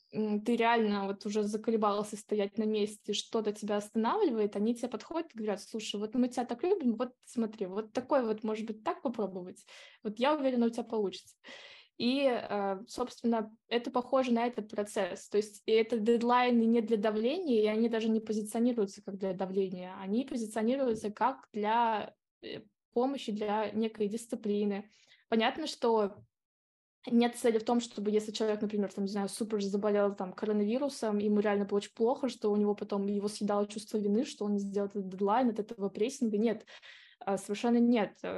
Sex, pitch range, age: female, 210-240 Hz, 20-39